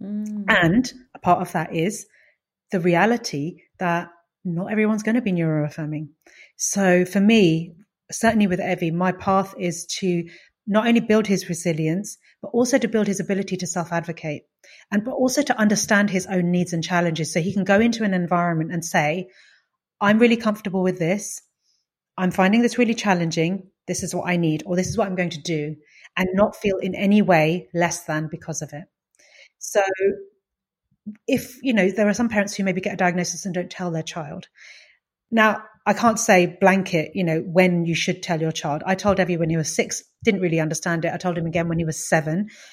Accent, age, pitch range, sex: British, 30-49, 170-205 Hz, female